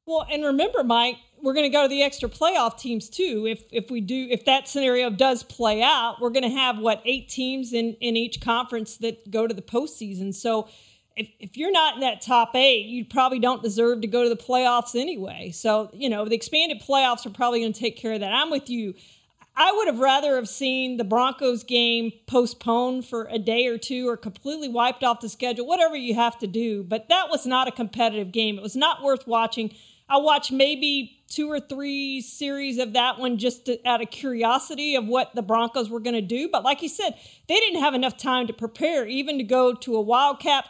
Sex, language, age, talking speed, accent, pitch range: female, English, 40-59, 230 wpm, American, 230-270 Hz